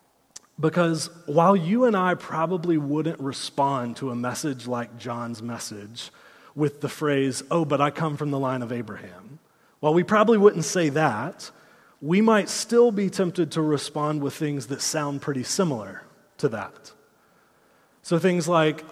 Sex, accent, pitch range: male, American, 140-175 Hz